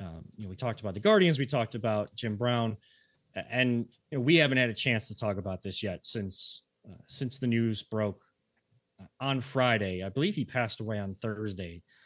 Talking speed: 205 wpm